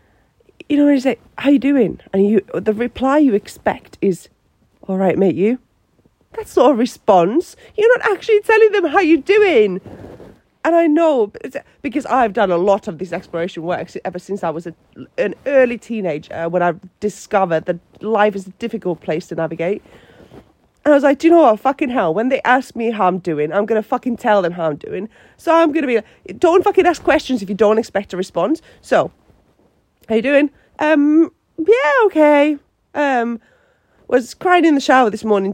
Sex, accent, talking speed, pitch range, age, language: female, British, 200 wpm, 185-290 Hz, 30-49, English